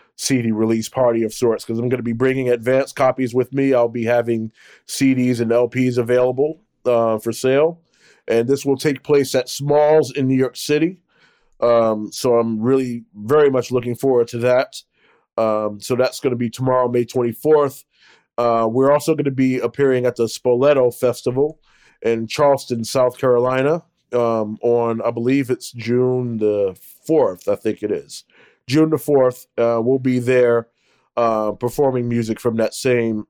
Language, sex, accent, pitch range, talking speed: English, male, American, 115-130 Hz, 170 wpm